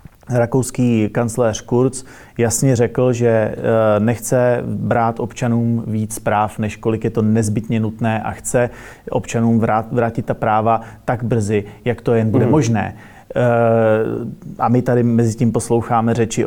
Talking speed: 135 wpm